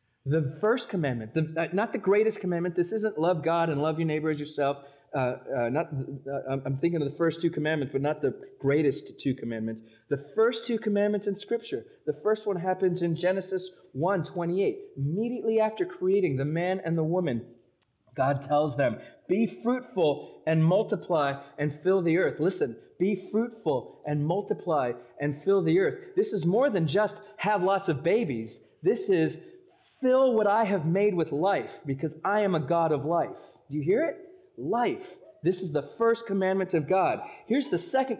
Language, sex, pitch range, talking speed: English, male, 155-215 Hz, 180 wpm